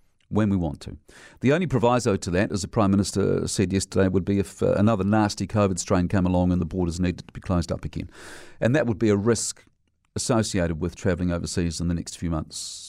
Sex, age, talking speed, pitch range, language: male, 50-69, 225 wpm, 90-120 Hz, English